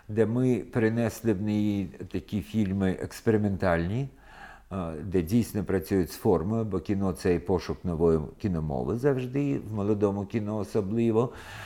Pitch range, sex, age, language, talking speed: 90-110 Hz, male, 50-69, Ukrainian, 135 wpm